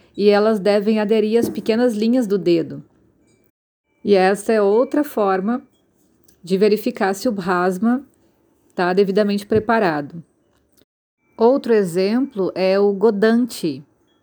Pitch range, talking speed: 190-235 Hz, 115 wpm